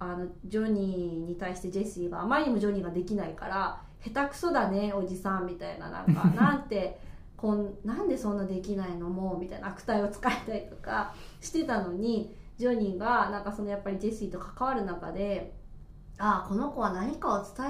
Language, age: Japanese, 20-39